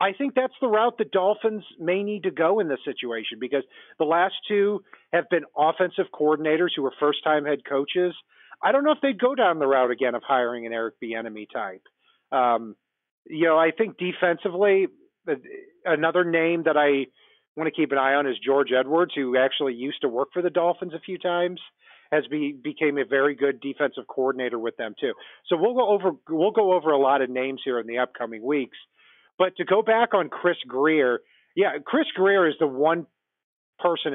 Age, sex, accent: 40-59, male, American